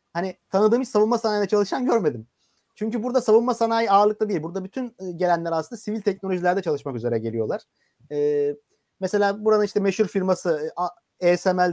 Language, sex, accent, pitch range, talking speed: Turkish, male, native, 145-205 Hz, 150 wpm